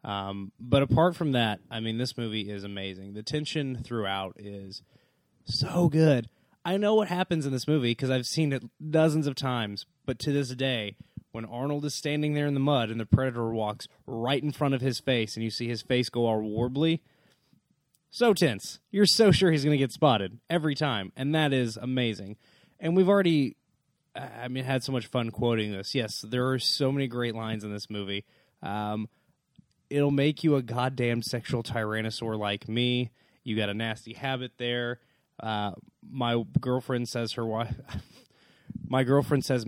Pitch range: 115-150 Hz